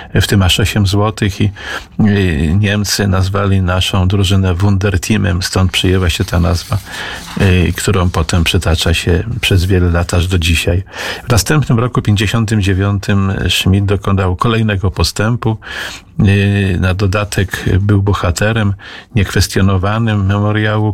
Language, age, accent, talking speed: Polish, 40-59, native, 120 wpm